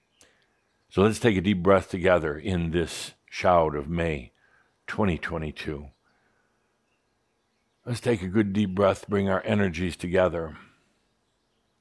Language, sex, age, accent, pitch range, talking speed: English, male, 60-79, American, 85-100 Hz, 115 wpm